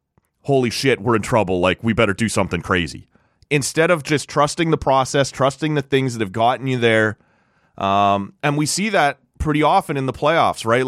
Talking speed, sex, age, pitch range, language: 200 wpm, male, 30-49, 100-145 Hz, English